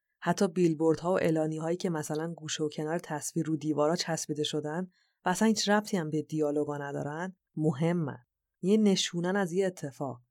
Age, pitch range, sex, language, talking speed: 30-49, 155-195 Hz, female, Persian, 165 wpm